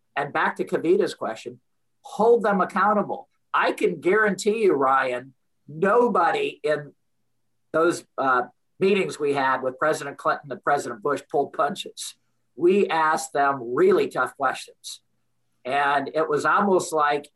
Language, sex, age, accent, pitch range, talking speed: English, male, 50-69, American, 145-205 Hz, 135 wpm